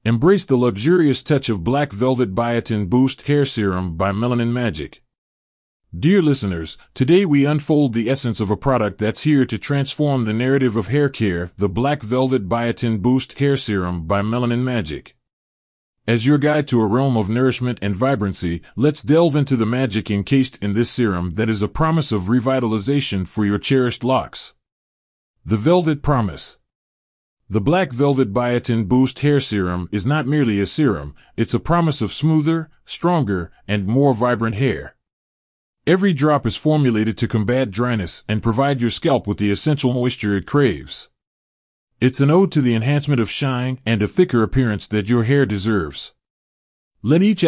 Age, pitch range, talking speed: 30-49, 105-140 Hz, 165 wpm